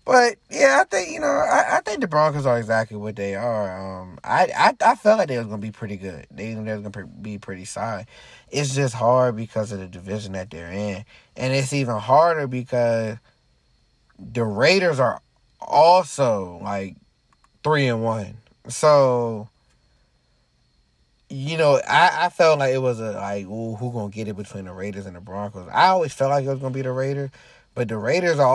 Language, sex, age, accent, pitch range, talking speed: English, male, 20-39, American, 105-155 Hz, 200 wpm